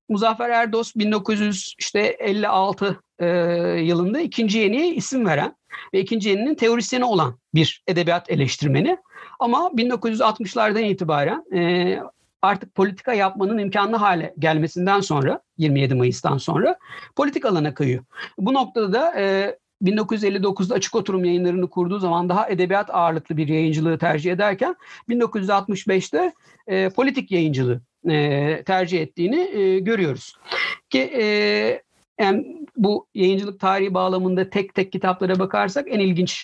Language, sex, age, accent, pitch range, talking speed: Turkish, male, 60-79, native, 175-220 Hz, 110 wpm